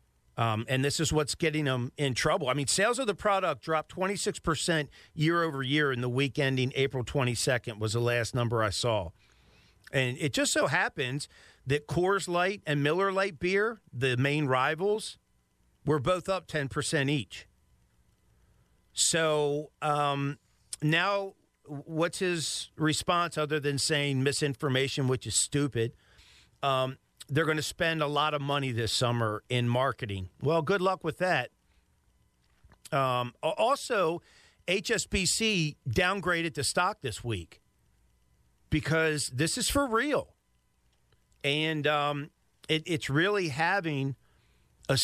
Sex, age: male, 50-69